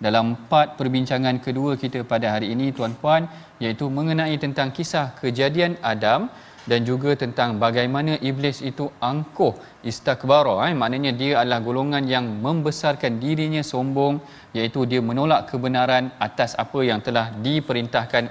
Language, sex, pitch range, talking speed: Malayalam, male, 130-160 Hz, 135 wpm